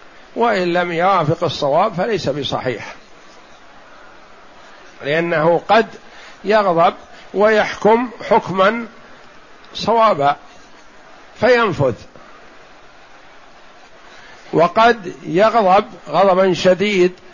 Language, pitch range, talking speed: Arabic, 165-205 Hz, 60 wpm